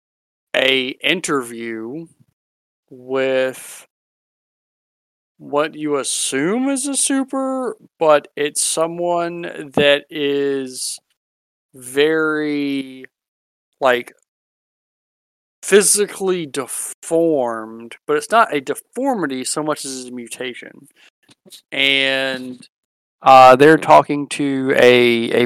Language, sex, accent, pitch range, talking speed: English, male, American, 125-150 Hz, 85 wpm